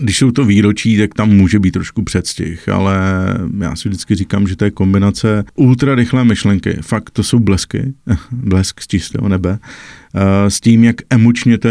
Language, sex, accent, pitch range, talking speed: Czech, male, native, 95-110 Hz, 180 wpm